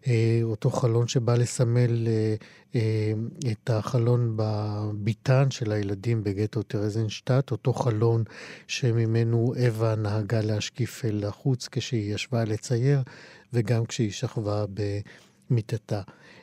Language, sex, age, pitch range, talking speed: Hebrew, male, 50-69, 110-130 Hz, 100 wpm